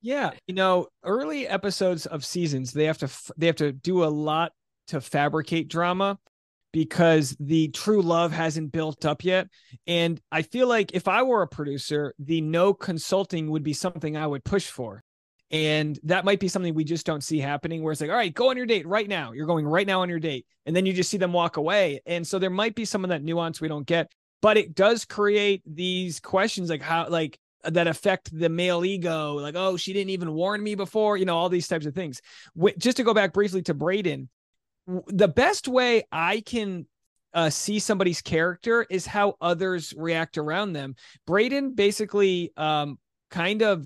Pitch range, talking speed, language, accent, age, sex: 160-200 Hz, 205 wpm, English, American, 30-49, male